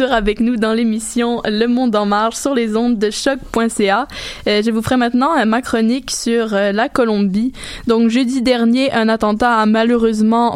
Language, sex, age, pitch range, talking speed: French, female, 20-39, 215-240 Hz, 175 wpm